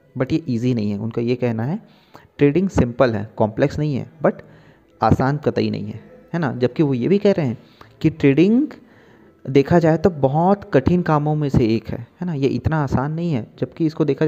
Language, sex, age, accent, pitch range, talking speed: Hindi, male, 30-49, native, 120-150 Hz, 215 wpm